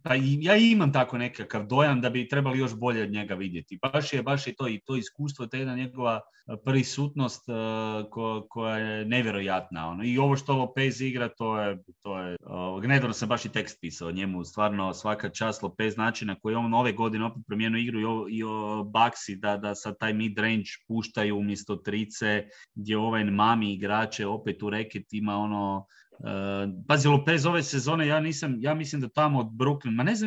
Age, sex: 30-49, male